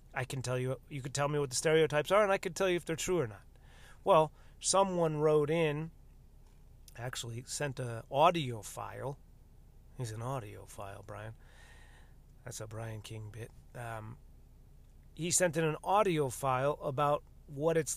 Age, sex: 30-49, male